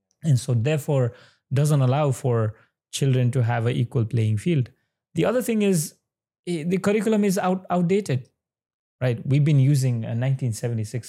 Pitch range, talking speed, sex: 120-160 Hz, 145 wpm, male